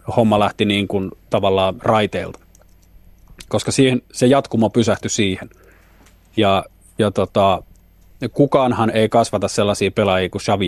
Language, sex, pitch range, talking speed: Finnish, male, 90-120 Hz, 125 wpm